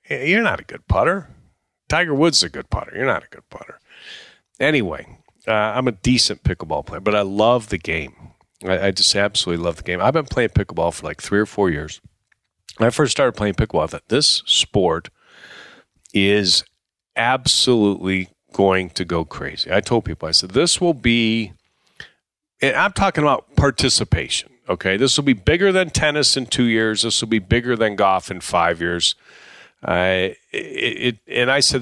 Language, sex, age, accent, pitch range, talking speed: English, male, 40-59, American, 95-125 Hz, 190 wpm